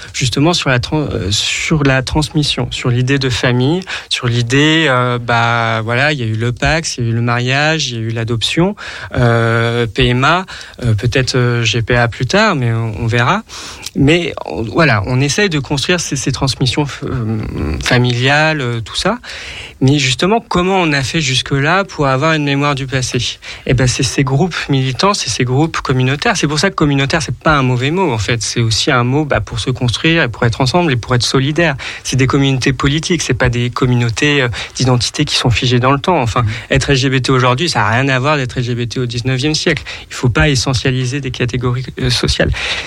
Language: French